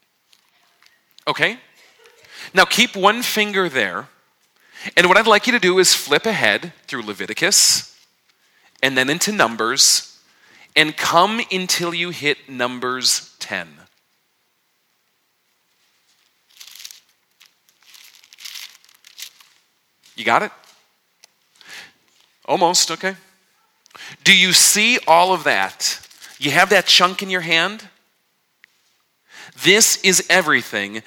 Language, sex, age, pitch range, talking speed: English, male, 40-59, 145-200 Hz, 95 wpm